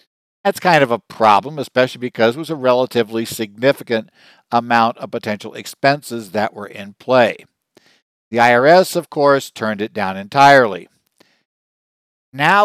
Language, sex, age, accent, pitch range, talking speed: English, male, 60-79, American, 115-140 Hz, 140 wpm